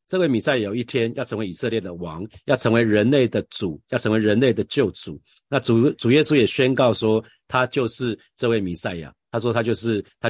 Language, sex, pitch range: Chinese, male, 100-125 Hz